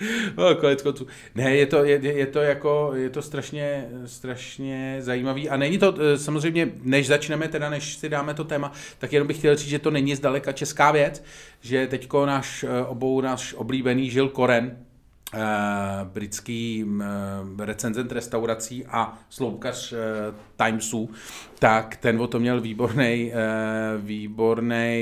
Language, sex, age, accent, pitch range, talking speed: Czech, male, 40-59, native, 110-135 Hz, 140 wpm